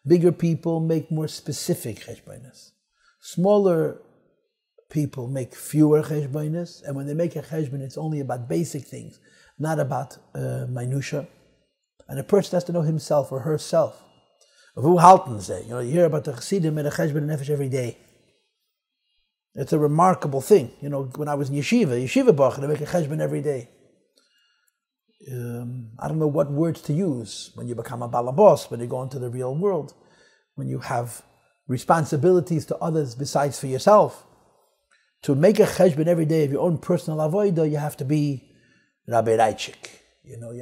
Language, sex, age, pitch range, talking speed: English, male, 50-69, 135-175 Hz, 170 wpm